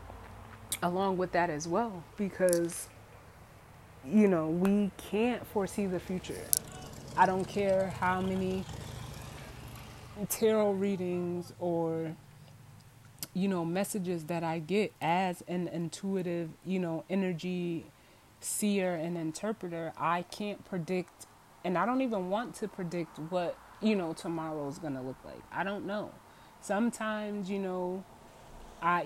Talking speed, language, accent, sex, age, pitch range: 125 wpm, English, American, female, 20-39, 155-190 Hz